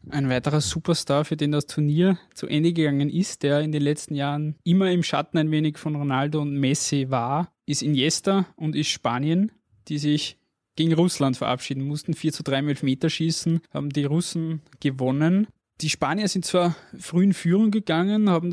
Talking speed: 180 wpm